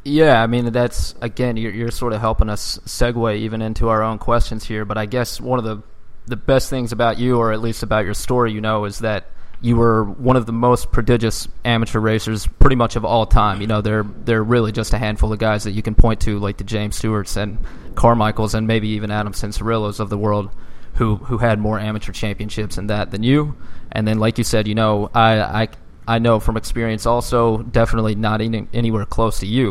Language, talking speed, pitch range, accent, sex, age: English, 225 wpm, 105-115 Hz, American, male, 20-39